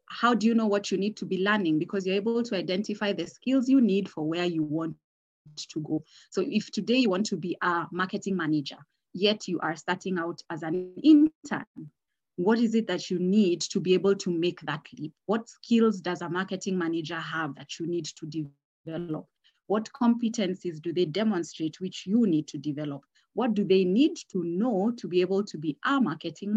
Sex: female